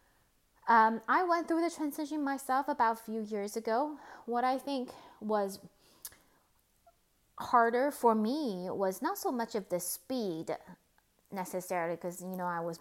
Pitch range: 185-240 Hz